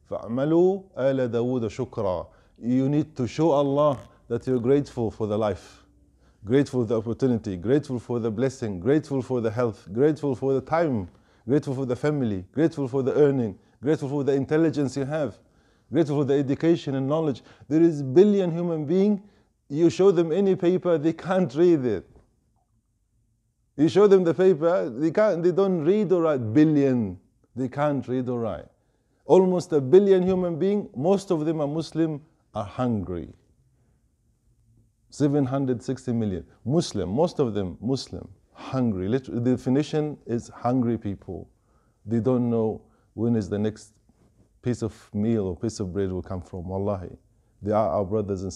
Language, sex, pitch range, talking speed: English, male, 110-155 Hz, 160 wpm